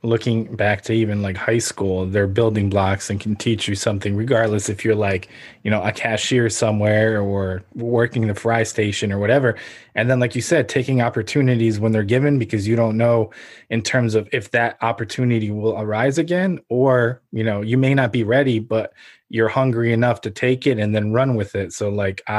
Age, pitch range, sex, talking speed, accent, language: 20-39, 110-125 Hz, male, 205 wpm, American, English